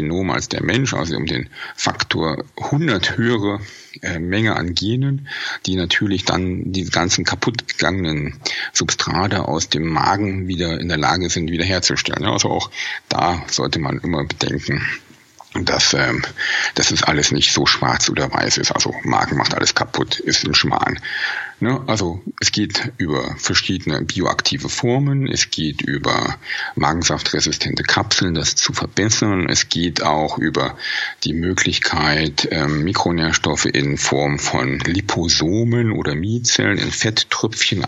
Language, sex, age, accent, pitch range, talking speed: German, male, 50-69, German, 80-110 Hz, 135 wpm